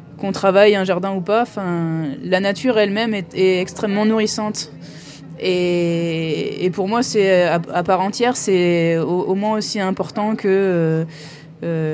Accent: French